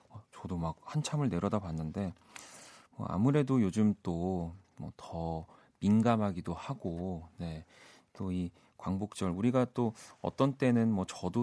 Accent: native